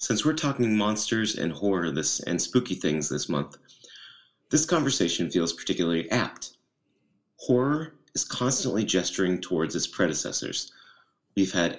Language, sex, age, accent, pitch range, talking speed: English, male, 30-49, American, 85-120 Hz, 125 wpm